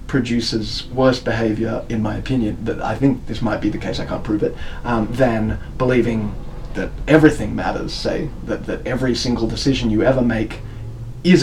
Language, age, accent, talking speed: English, 20-39, Australian, 180 wpm